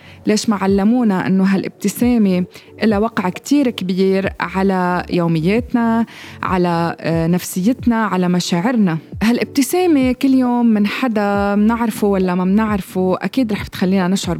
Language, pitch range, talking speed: Arabic, 180-230 Hz, 115 wpm